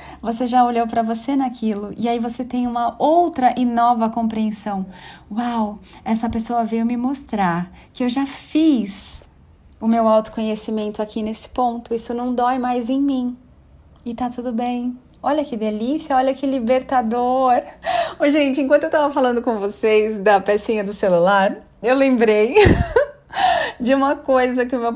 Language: Portuguese